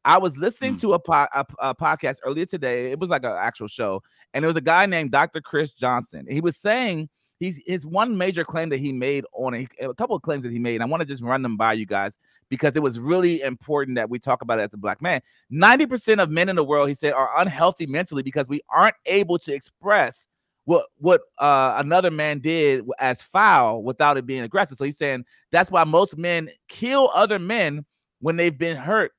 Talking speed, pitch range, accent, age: 230 wpm, 135-175 Hz, American, 30-49